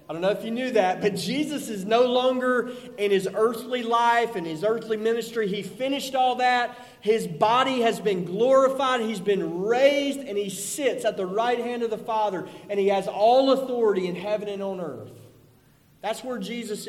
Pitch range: 165-235 Hz